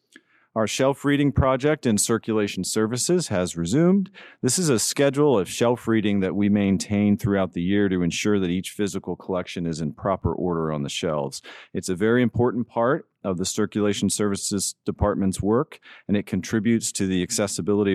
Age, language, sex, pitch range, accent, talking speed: 40-59, English, male, 90-115 Hz, American, 175 wpm